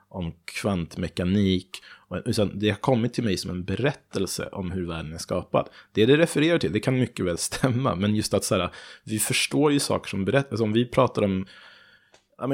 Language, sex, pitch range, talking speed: Swedish, male, 95-120 Hz, 190 wpm